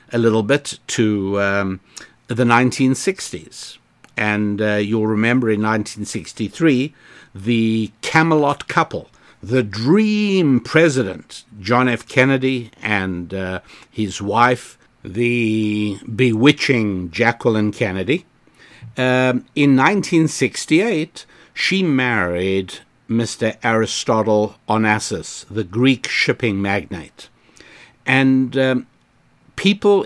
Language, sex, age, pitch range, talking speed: English, male, 60-79, 105-130 Hz, 90 wpm